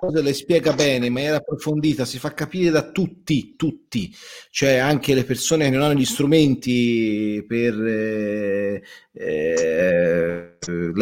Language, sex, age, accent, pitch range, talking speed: Italian, male, 30-49, native, 125-165 Hz, 135 wpm